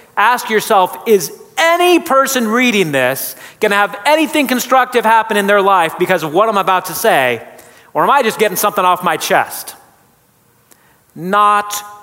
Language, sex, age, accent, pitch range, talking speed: English, male, 30-49, American, 140-205 Hz, 165 wpm